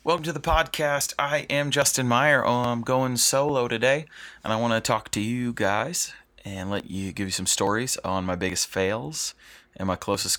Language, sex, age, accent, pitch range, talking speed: English, male, 30-49, American, 95-120 Hz, 195 wpm